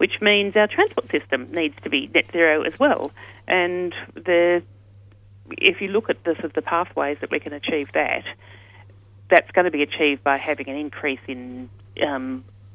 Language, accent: English, Australian